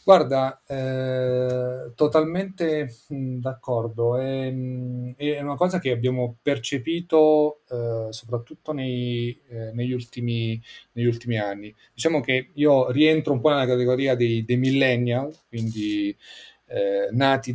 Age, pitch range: 30-49, 120-135 Hz